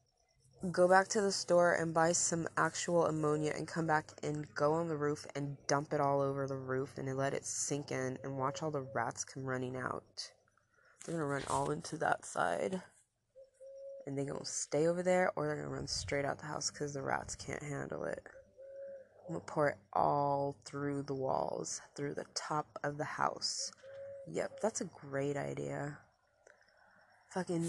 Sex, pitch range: female, 140-180 Hz